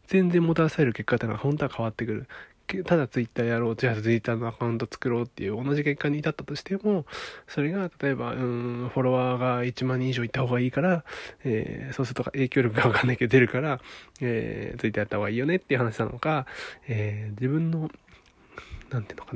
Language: Japanese